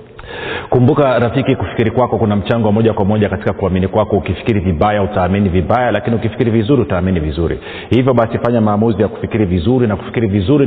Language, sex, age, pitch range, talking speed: Swahili, male, 40-59, 100-125 Hz, 175 wpm